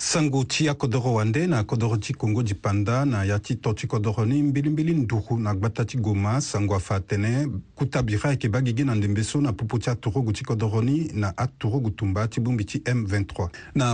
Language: Italian